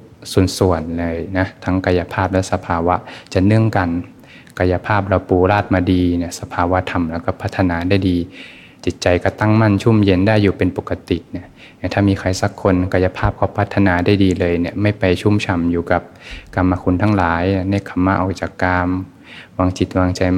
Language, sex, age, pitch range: Thai, male, 20-39, 90-100 Hz